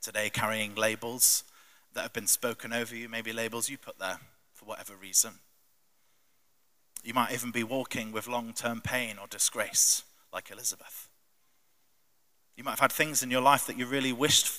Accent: British